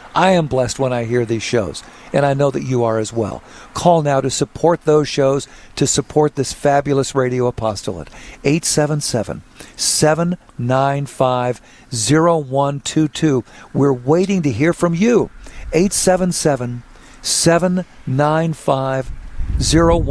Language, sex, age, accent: English, male, 50-69, American